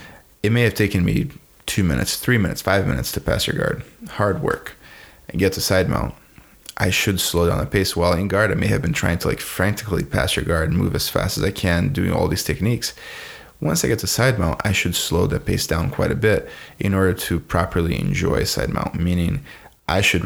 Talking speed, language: 230 wpm, English